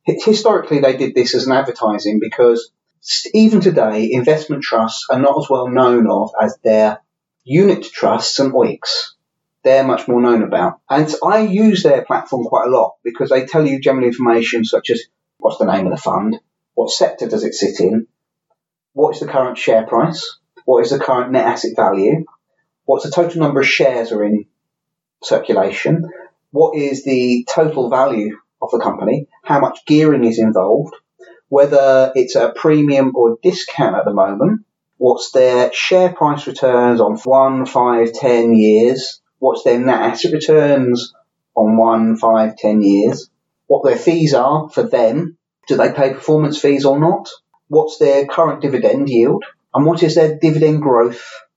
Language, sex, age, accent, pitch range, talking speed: English, male, 30-49, British, 120-165 Hz, 170 wpm